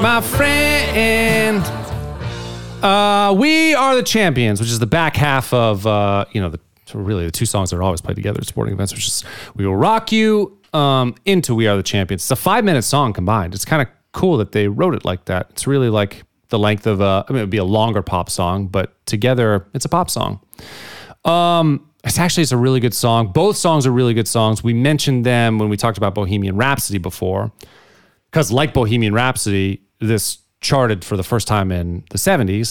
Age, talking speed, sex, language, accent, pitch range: 30-49, 210 wpm, male, English, American, 100-150 Hz